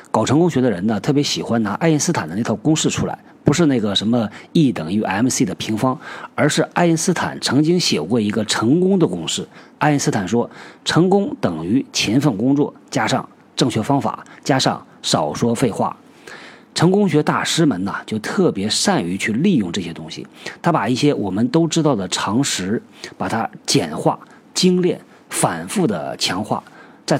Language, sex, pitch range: Chinese, male, 120-165 Hz